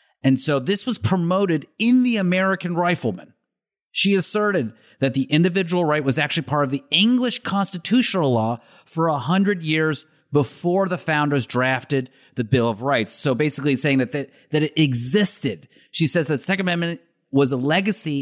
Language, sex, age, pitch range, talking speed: English, male, 40-59, 140-195 Hz, 170 wpm